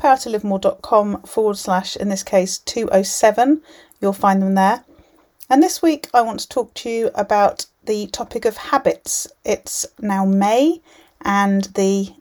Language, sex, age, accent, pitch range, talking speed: English, female, 40-59, British, 190-235 Hz, 145 wpm